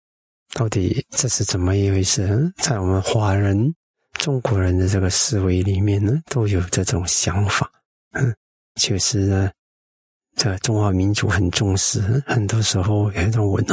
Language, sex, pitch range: Chinese, male, 95-115 Hz